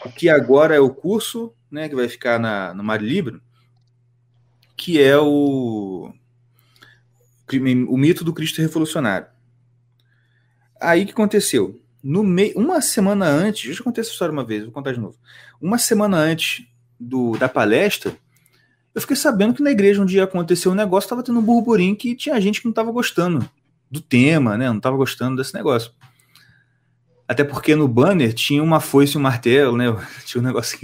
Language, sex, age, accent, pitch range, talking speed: Portuguese, male, 30-49, Brazilian, 120-195 Hz, 180 wpm